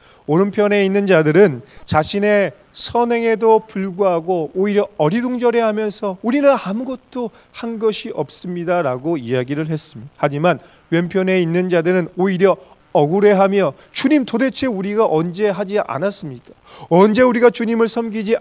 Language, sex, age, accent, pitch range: Korean, male, 30-49, native, 145-205 Hz